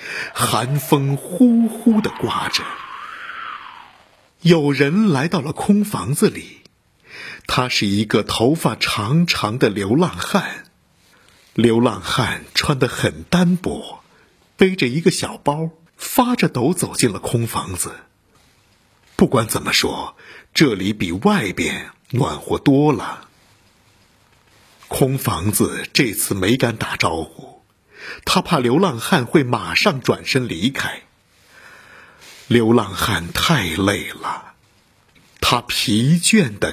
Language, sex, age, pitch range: Chinese, male, 50-69, 115-185 Hz